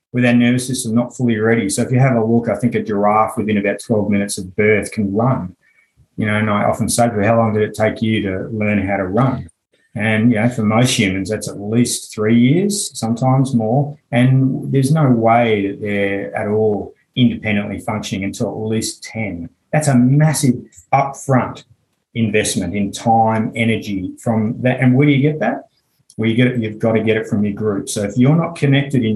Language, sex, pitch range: English, male, 105-135 Hz